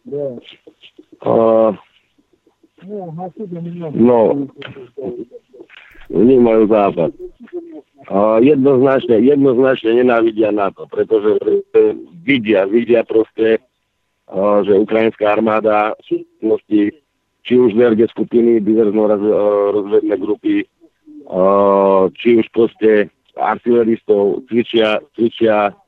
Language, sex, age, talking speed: Slovak, male, 50-69, 85 wpm